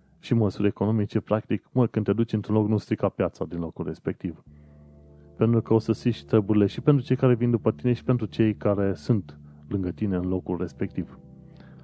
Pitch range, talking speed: 80-110 Hz, 200 wpm